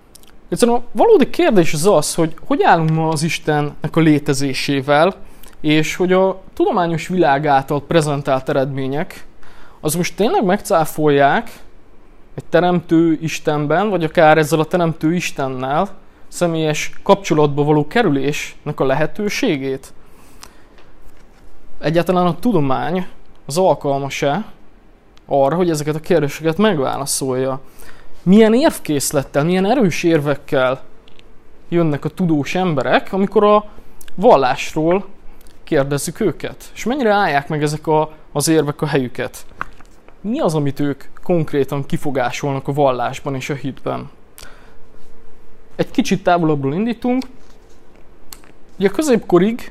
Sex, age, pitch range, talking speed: male, 20-39, 145-185 Hz, 115 wpm